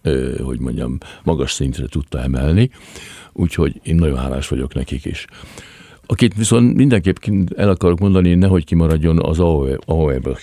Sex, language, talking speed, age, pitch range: male, Hungarian, 150 wpm, 60-79, 70-95 Hz